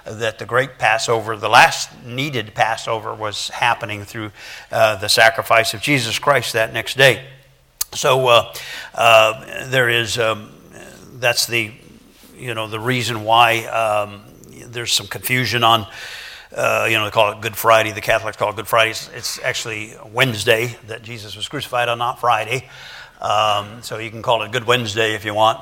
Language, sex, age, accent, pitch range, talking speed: English, male, 60-79, American, 110-120 Hz, 175 wpm